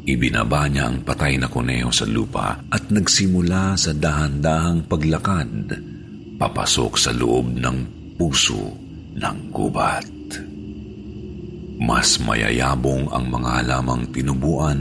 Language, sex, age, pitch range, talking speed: Filipino, male, 50-69, 65-85 Hz, 100 wpm